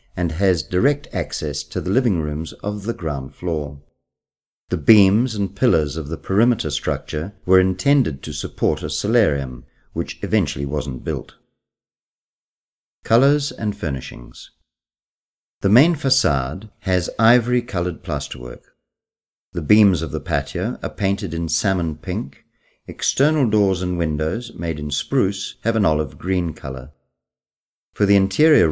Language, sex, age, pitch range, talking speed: Italian, male, 50-69, 75-100 Hz, 135 wpm